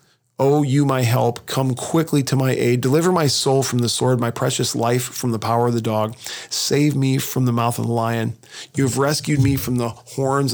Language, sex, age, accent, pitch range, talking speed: English, male, 40-59, American, 125-145 Hz, 215 wpm